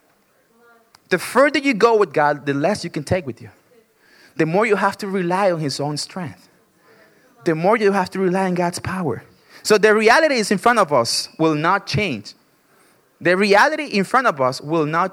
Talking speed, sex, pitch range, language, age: 200 wpm, male, 165-235 Hz, English, 20-39